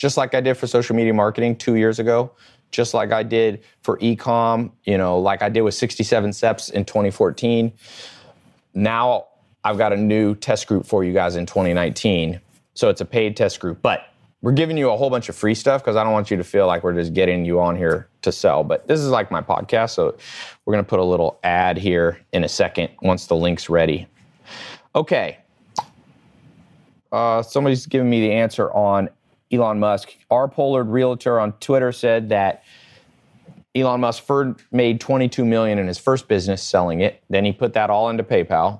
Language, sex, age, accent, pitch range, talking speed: English, male, 30-49, American, 95-120 Hz, 200 wpm